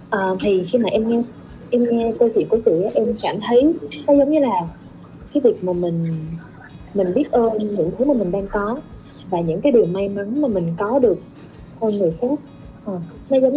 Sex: female